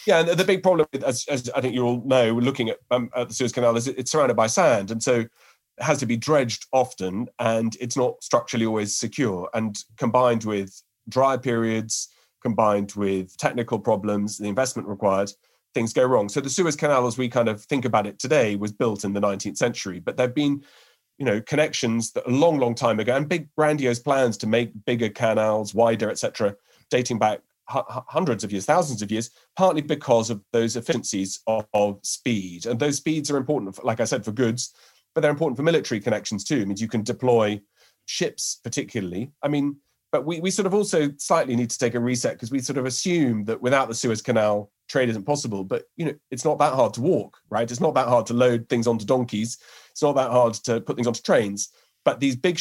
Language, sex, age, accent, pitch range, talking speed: English, male, 30-49, British, 110-135 Hz, 220 wpm